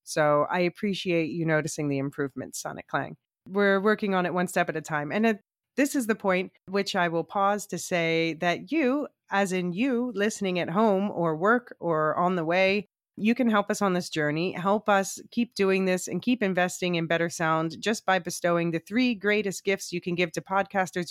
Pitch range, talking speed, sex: 160-195 Hz, 210 wpm, female